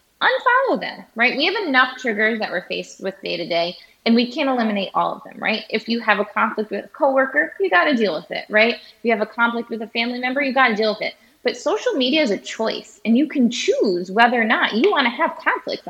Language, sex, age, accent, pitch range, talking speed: English, female, 20-39, American, 195-260 Hz, 255 wpm